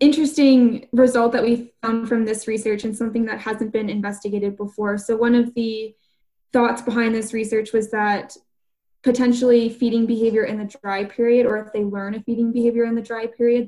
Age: 10-29